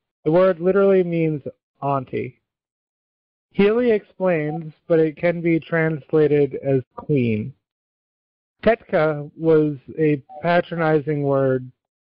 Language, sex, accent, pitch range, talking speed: English, male, American, 135-165 Hz, 95 wpm